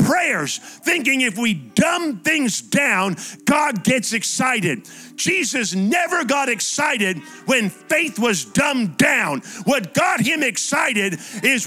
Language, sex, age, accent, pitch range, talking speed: English, male, 50-69, American, 240-335 Hz, 125 wpm